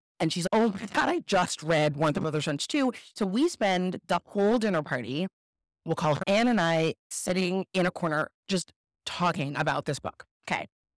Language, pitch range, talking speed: English, 155-215 Hz, 200 wpm